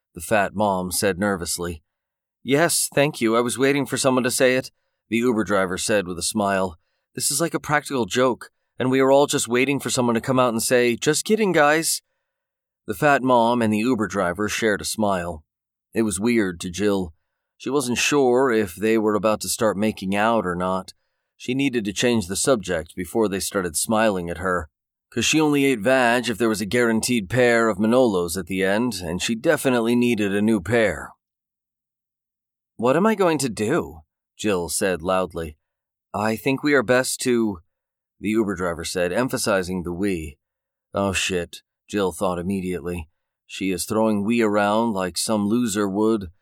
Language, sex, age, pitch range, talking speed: English, male, 30-49, 95-125 Hz, 185 wpm